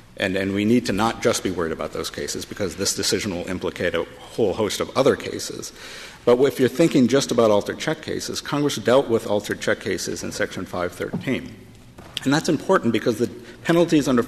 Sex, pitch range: male, 100-125 Hz